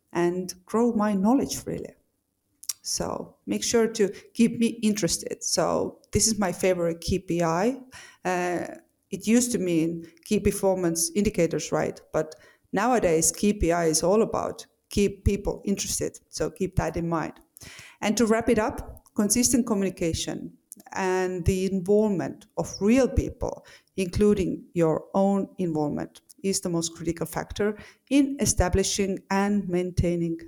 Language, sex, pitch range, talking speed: English, female, 170-215 Hz, 130 wpm